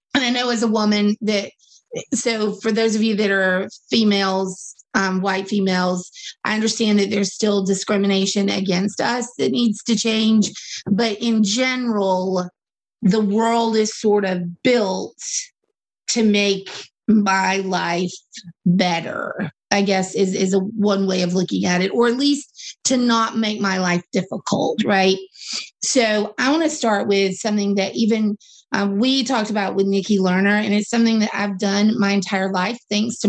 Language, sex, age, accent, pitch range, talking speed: English, female, 30-49, American, 200-235 Hz, 165 wpm